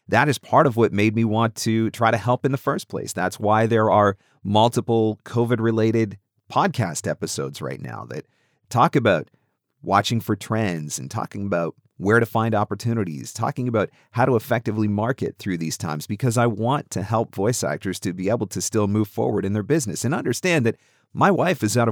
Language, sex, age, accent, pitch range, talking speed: English, male, 40-59, American, 105-135 Hz, 195 wpm